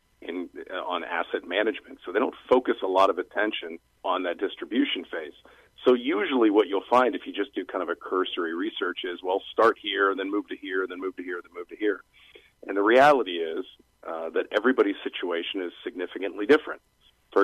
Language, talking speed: English, 215 wpm